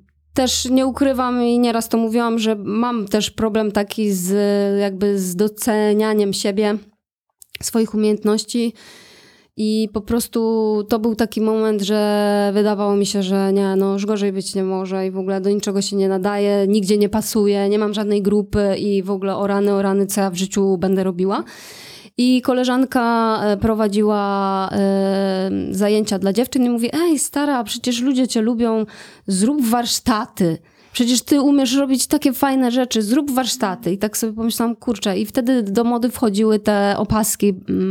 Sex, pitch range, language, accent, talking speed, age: female, 200-235 Hz, Polish, native, 165 wpm, 20-39